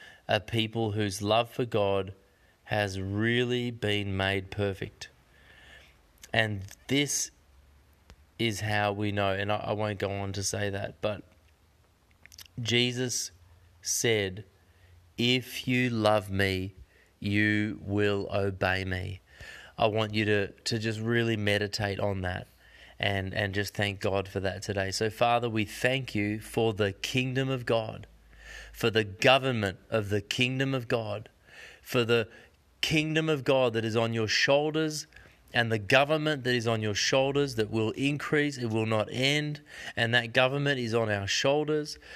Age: 20-39